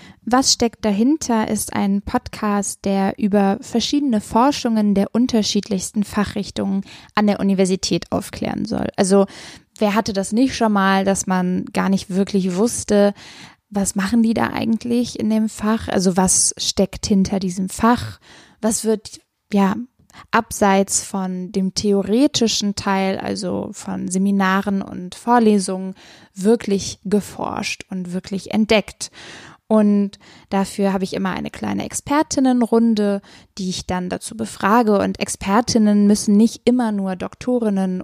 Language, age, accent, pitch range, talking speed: German, 10-29, German, 195-230 Hz, 130 wpm